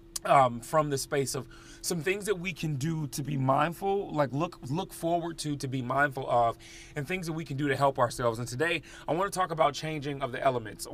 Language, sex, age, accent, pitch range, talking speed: English, male, 30-49, American, 120-155 Hz, 235 wpm